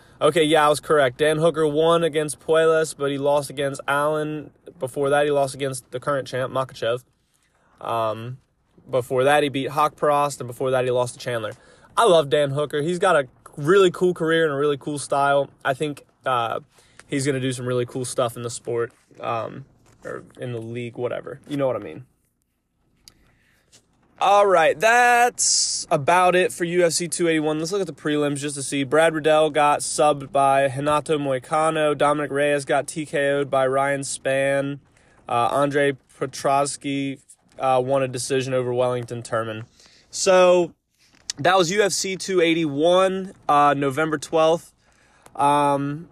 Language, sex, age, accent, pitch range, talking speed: English, male, 20-39, American, 135-160 Hz, 165 wpm